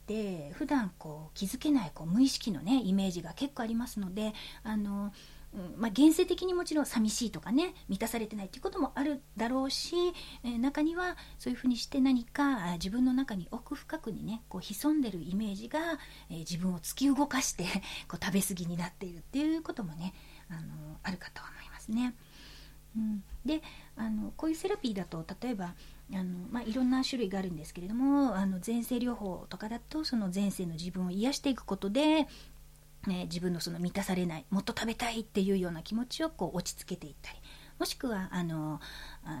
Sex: female